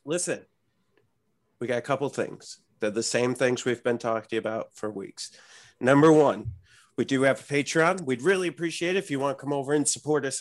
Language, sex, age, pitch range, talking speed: English, male, 40-59, 115-140 Hz, 215 wpm